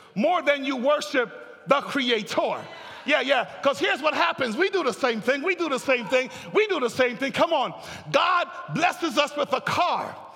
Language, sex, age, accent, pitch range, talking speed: English, male, 40-59, American, 275-370 Hz, 205 wpm